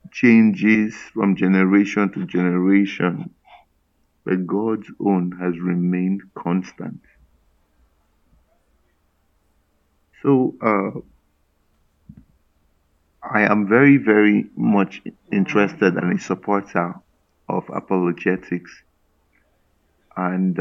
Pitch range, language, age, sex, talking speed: 90-100 Hz, English, 50-69, male, 75 wpm